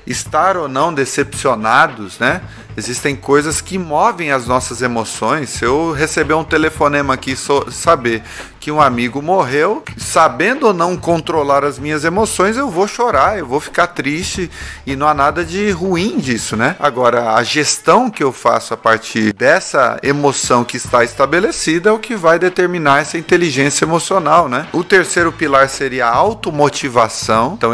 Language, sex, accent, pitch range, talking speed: Portuguese, male, Brazilian, 115-155 Hz, 160 wpm